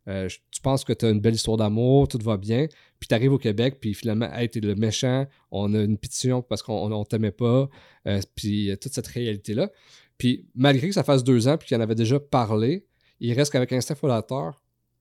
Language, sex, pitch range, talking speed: French, male, 110-135 Hz, 230 wpm